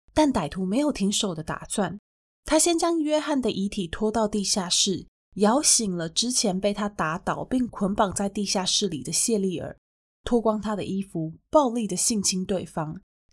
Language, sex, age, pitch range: Chinese, female, 20-39, 185-240 Hz